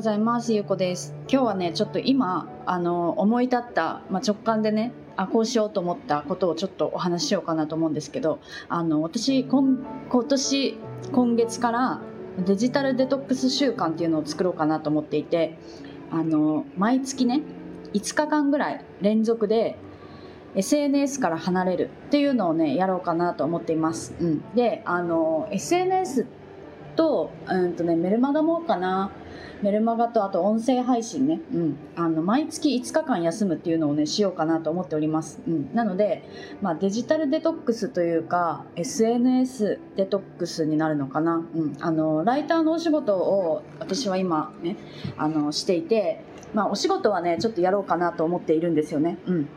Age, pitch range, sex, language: 20-39, 165-250 Hz, female, Japanese